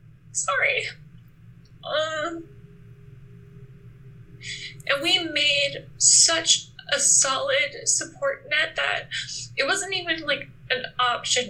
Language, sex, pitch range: English, female, 195-285 Hz